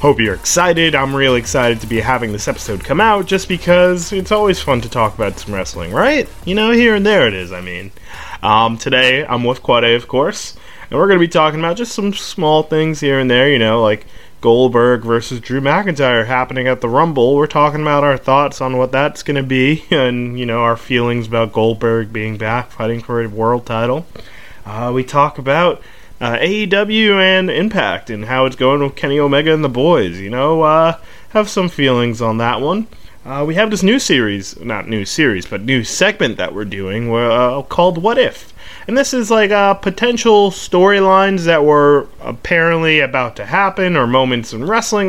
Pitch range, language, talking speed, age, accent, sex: 115-175 Hz, English, 205 wpm, 20-39, American, male